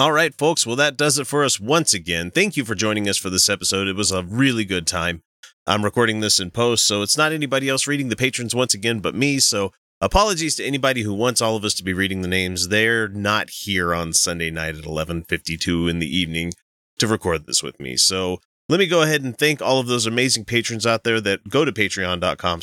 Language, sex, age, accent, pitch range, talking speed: English, male, 30-49, American, 90-130 Hz, 240 wpm